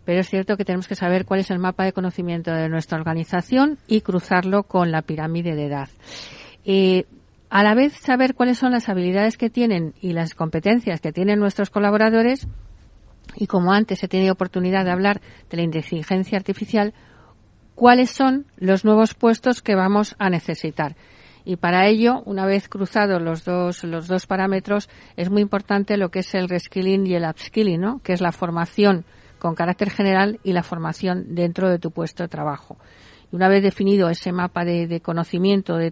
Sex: female